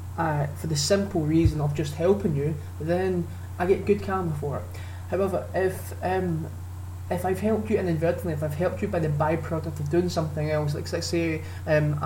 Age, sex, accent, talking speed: 20-39, male, British, 195 wpm